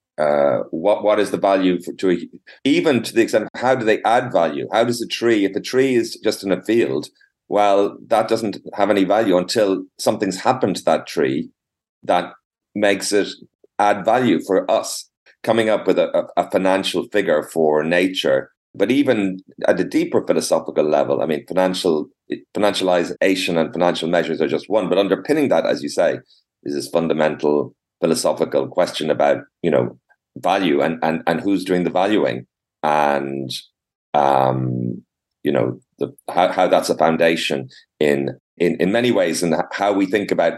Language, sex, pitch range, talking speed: English, male, 85-105 Hz, 175 wpm